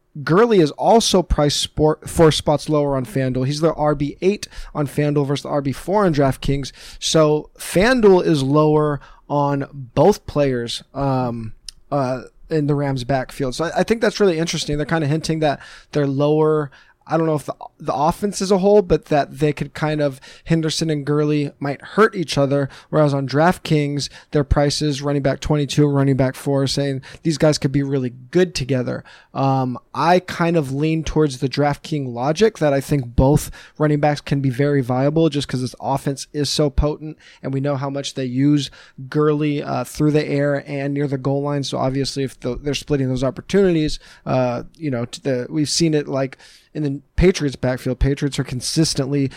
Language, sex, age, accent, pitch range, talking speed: English, male, 20-39, American, 135-155 Hz, 185 wpm